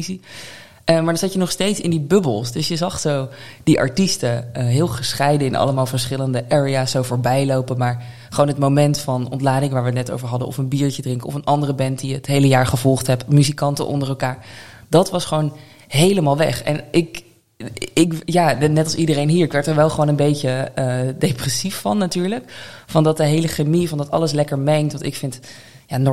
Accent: Dutch